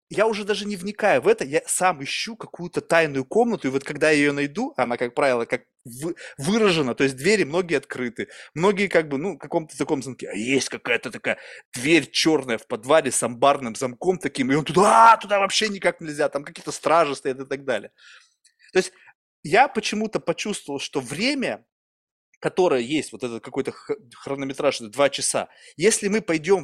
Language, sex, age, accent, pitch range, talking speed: Russian, male, 20-39, native, 135-200 Hz, 185 wpm